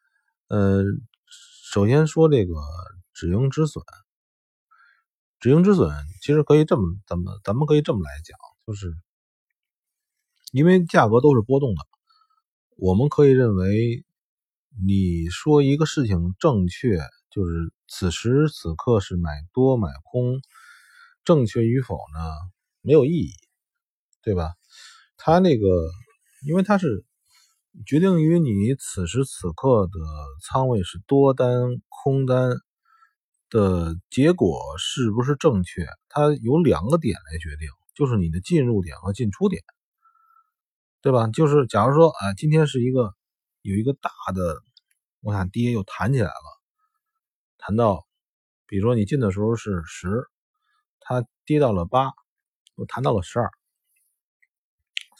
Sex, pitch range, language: male, 95-155 Hz, Chinese